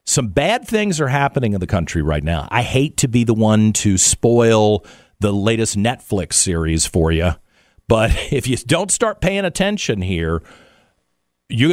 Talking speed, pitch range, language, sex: 170 wpm, 95-155 Hz, English, male